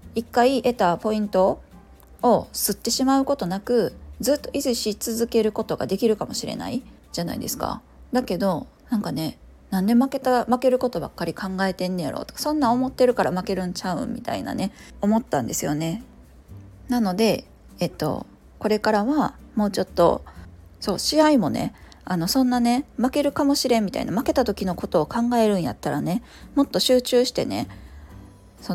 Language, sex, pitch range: Japanese, female, 185-250 Hz